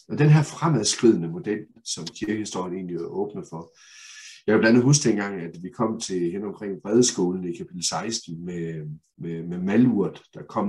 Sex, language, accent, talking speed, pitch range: male, Danish, native, 180 wpm, 95-130 Hz